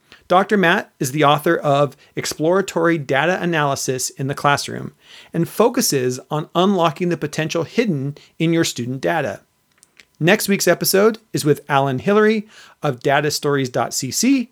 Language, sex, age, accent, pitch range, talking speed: English, male, 40-59, American, 145-190 Hz, 130 wpm